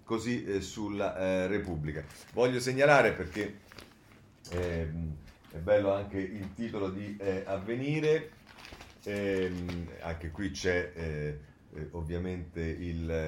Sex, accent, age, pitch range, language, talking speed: male, native, 40-59, 85-110 Hz, Italian, 100 wpm